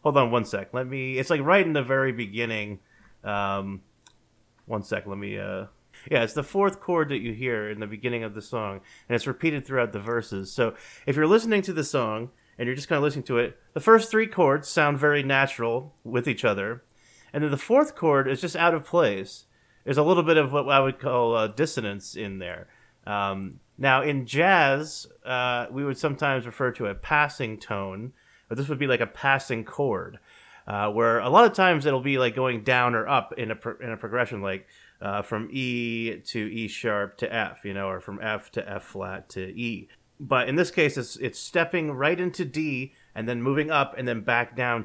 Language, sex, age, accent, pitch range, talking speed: English, male, 30-49, American, 115-150 Hz, 220 wpm